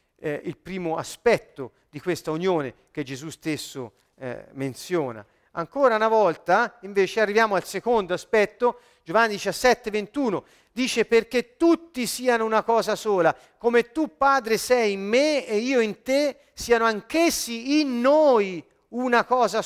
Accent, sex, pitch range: native, male, 205-280 Hz